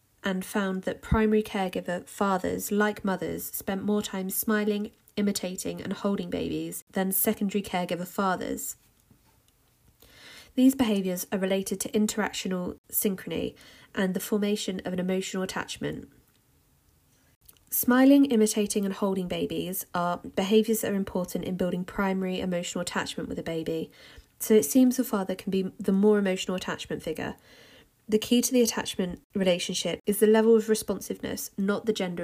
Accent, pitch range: British, 180-215 Hz